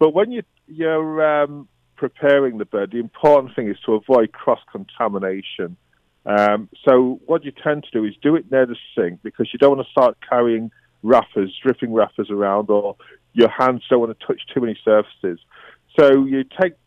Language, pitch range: English, 105-140 Hz